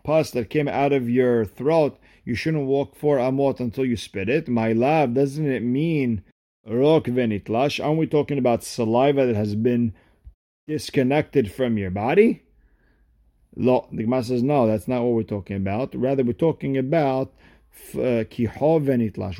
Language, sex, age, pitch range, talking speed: English, male, 40-59, 115-145 Hz, 160 wpm